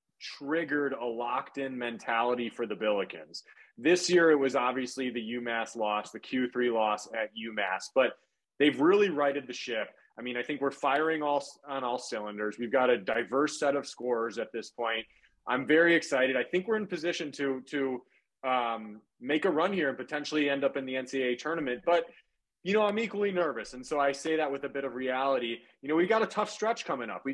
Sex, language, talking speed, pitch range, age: male, English, 210 wpm, 125-170 Hz, 20-39